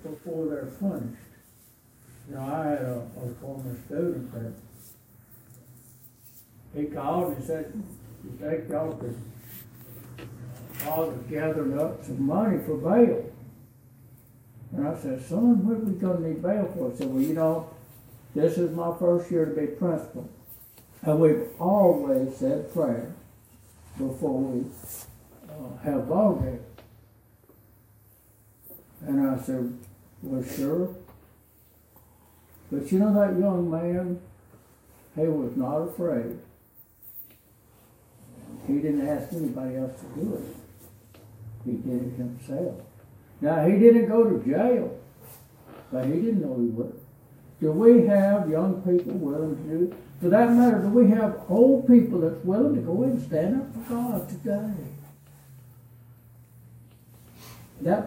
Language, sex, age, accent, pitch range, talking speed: English, male, 60-79, American, 120-180 Hz, 135 wpm